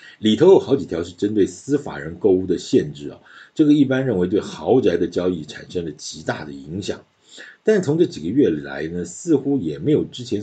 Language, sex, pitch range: Chinese, male, 85-125 Hz